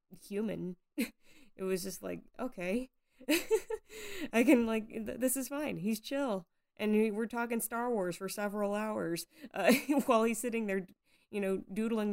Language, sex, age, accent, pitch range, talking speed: English, female, 20-39, American, 175-215 Hz, 155 wpm